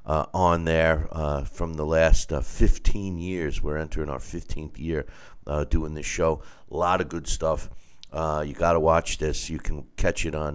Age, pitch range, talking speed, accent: 50-69, 75-90 Hz, 200 wpm, American